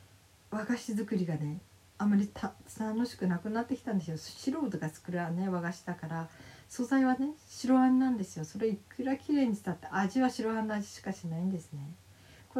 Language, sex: Japanese, female